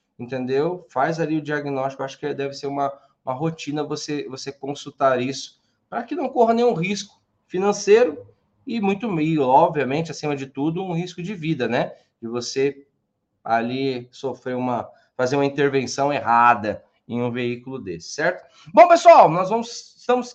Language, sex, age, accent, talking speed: Portuguese, male, 20-39, Brazilian, 160 wpm